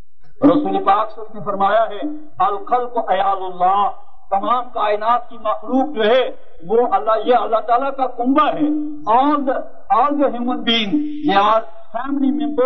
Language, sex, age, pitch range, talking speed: Urdu, male, 50-69, 205-290 Hz, 110 wpm